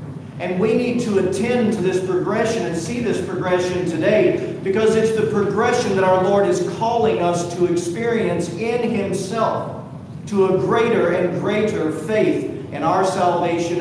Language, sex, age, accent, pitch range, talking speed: English, male, 50-69, American, 165-205 Hz, 155 wpm